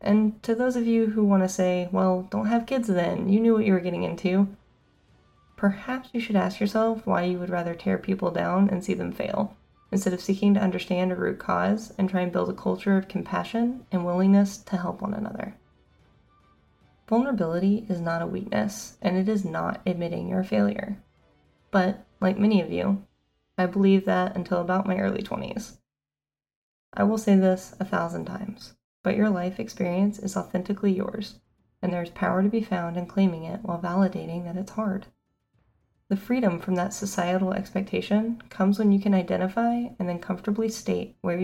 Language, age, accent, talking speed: English, 20-39, American, 185 wpm